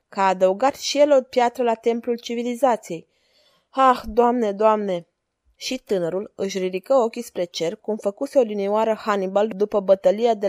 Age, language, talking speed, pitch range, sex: 20-39, Romanian, 155 wpm, 200-265 Hz, female